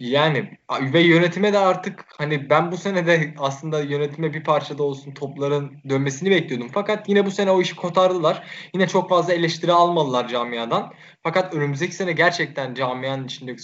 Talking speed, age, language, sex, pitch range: 165 wpm, 10-29, Turkish, male, 140-185 Hz